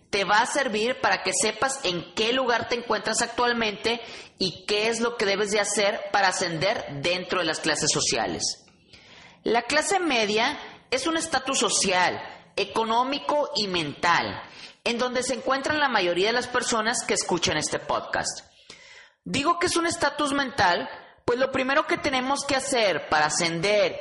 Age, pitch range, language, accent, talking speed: 30-49, 195-265 Hz, Spanish, Mexican, 165 wpm